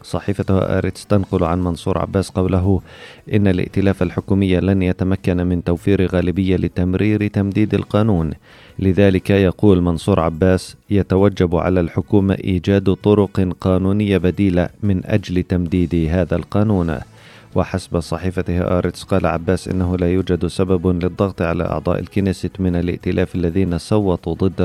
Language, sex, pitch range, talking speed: Arabic, male, 85-95 Hz, 125 wpm